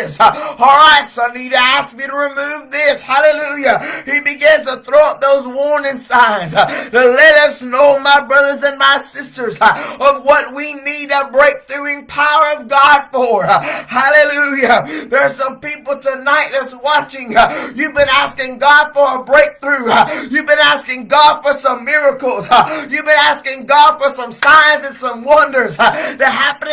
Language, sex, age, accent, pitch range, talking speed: English, male, 20-39, American, 265-300 Hz, 165 wpm